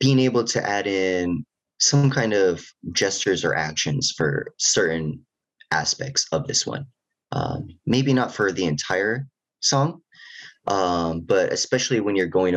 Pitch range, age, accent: 80-135 Hz, 30-49, American